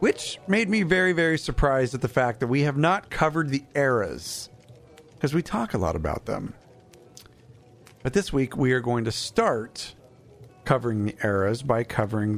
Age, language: 40-59, English